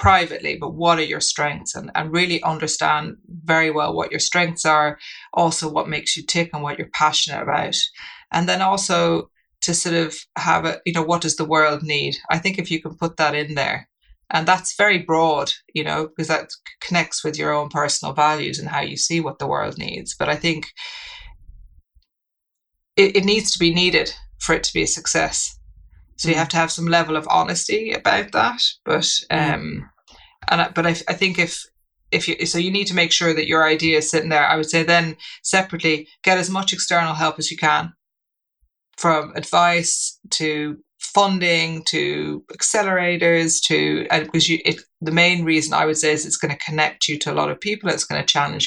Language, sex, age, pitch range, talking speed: English, female, 30-49, 155-175 Hz, 205 wpm